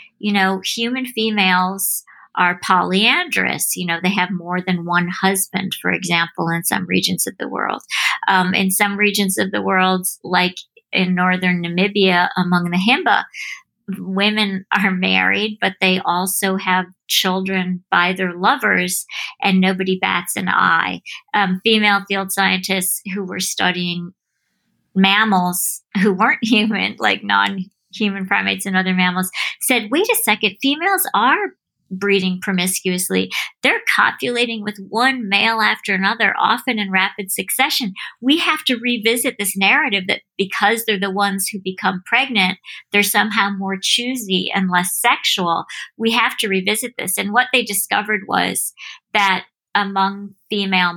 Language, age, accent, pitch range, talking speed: English, 50-69, American, 185-220 Hz, 145 wpm